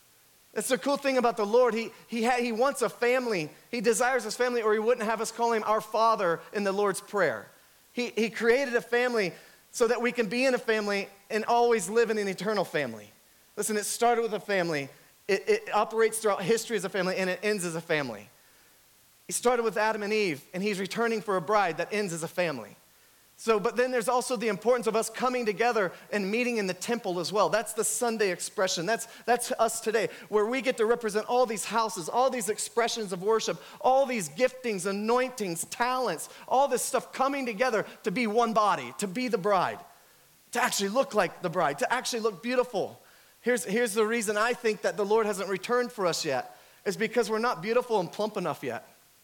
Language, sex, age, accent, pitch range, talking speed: English, male, 30-49, American, 205-240 Hz, 215 wpm